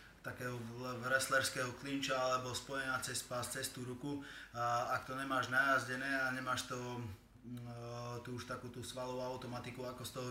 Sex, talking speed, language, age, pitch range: male, 150 wpm, Slovak, 20-39, 120-130 Hz